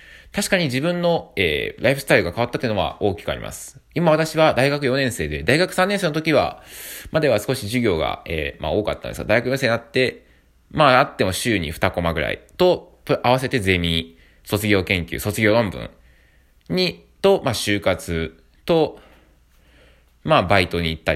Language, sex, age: Japanese, male, 20-39